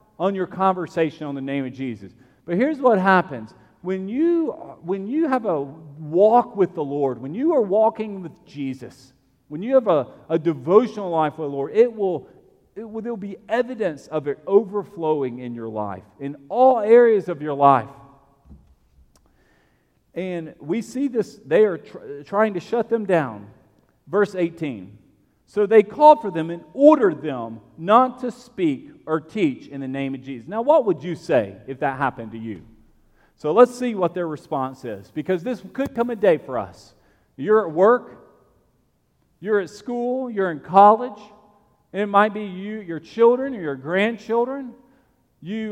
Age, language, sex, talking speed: 40-59, English, male, 175 wpm